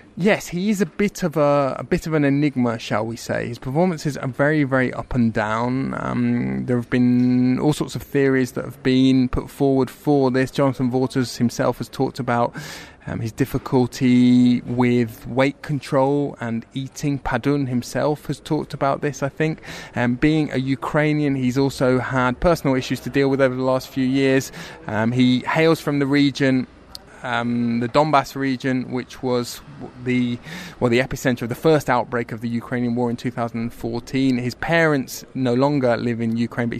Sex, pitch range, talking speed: male, 125-145 Hz, 185 wpm